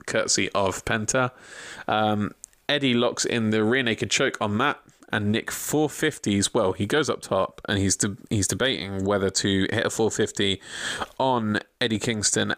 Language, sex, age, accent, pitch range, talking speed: English, male, 20-39, British, 100-120 Hz, 160 wpm